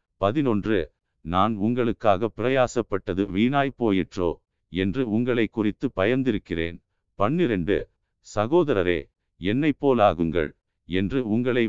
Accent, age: native, 50-69